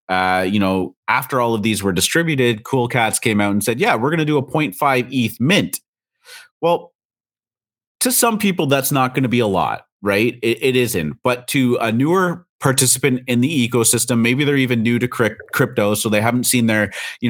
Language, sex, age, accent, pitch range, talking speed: English, male, 30-49, American, 105-130 Hz, 205 wpm